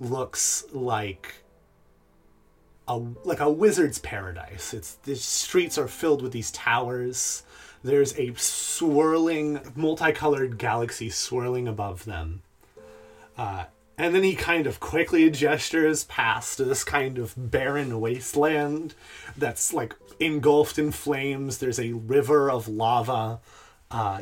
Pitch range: 105-145 Hz